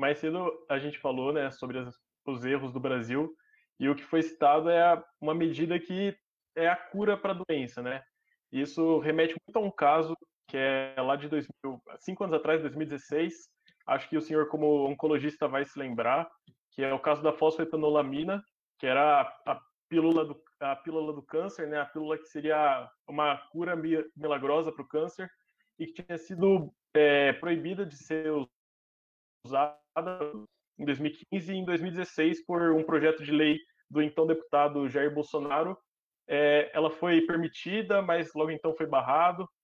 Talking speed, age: 170 wpm, 20-39